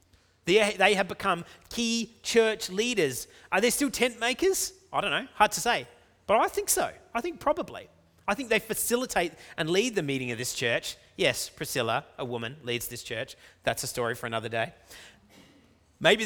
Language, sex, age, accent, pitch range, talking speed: English, male, 30-49, Australian, 105-160 Hz, 180 wpm